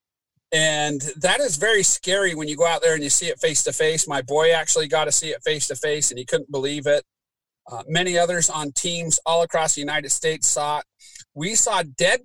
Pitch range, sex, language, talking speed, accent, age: 150-190 Hz, male, English, 210 wpm, American, 40-59